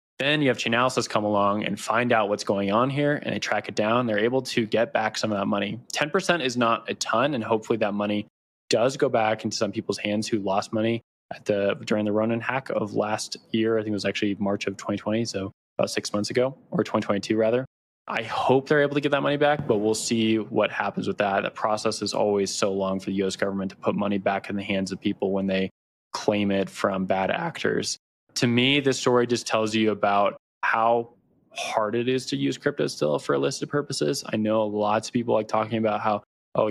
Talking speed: 235 wpm